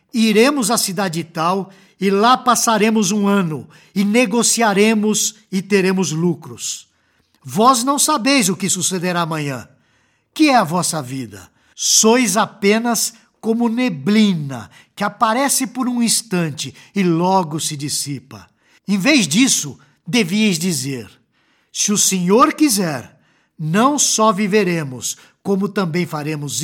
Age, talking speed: 60-79, 120 wpm